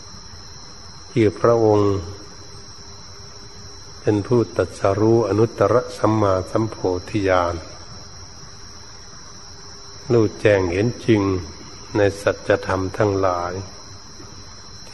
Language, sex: Thai, male